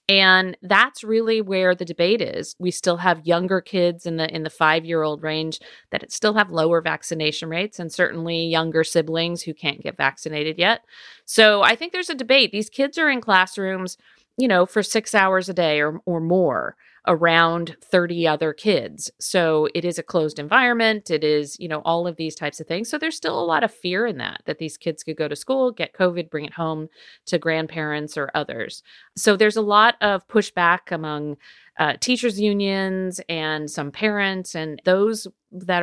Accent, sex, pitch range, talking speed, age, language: American, female, 160-200 Hz, 195 wpm, 40-59, English